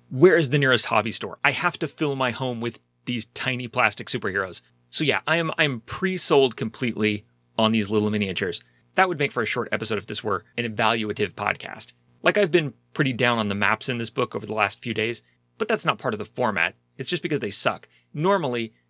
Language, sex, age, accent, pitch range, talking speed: English, male, 30-49, American, 105-145 Hz, 225 wpm